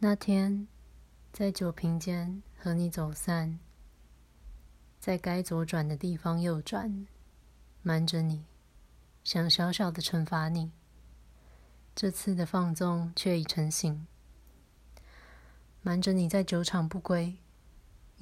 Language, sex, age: Chinese, female, 20-39